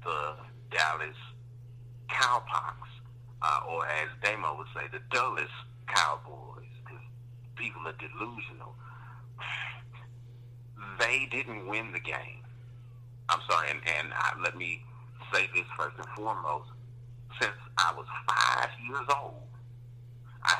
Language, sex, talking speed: English, male, 115 wpm